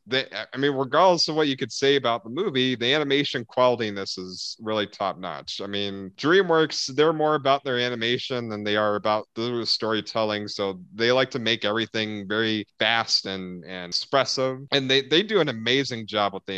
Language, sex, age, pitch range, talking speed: English, male, 30-49, 110-140 Hz, 190 wpm